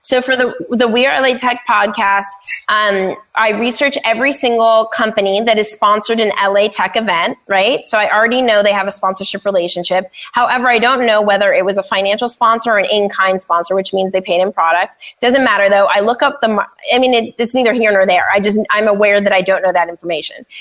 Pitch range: 195-235 Hz